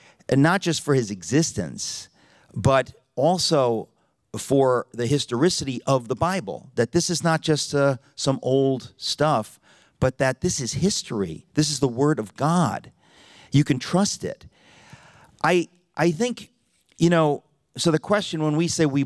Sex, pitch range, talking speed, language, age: male, 120-160 Hz, 155 wpm, English, 40-59